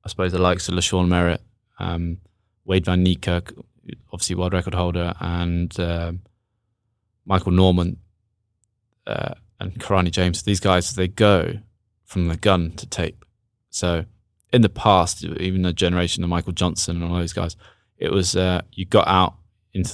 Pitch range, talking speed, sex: 85-100 Hz, 160 wpm, male